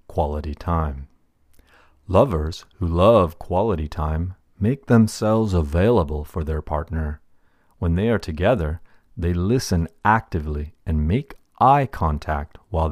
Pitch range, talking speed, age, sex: 80-100 Hz, 115 wpm, 40-59, male